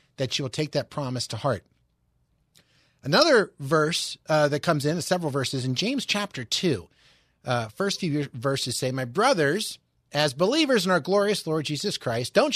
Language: English